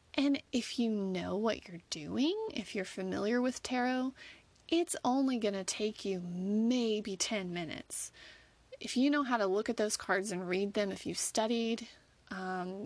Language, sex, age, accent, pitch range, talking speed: English, female, 30-49, American, 195-260 Hz, 175 wpm